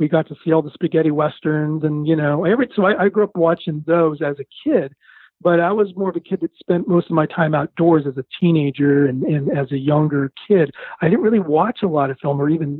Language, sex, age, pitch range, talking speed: English, male, 40-59, 150-180 Hz, 260 wpm